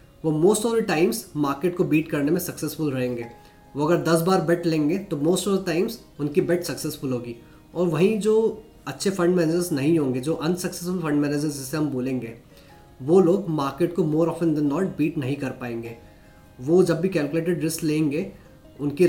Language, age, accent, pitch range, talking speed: Hindi, 20-39, native, 135-175 Hz, 195 wpm